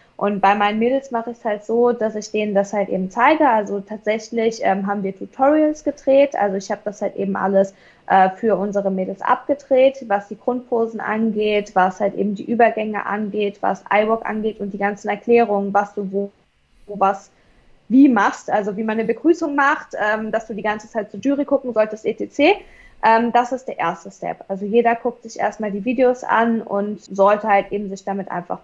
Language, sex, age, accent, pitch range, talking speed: German, female, 20-39, German, 195-235 Hz, 205 wpm